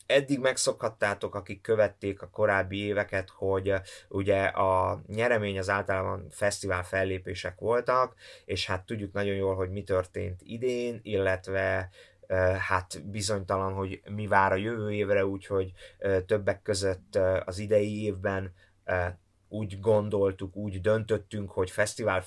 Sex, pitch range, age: male, 95-105 Hz, 20-39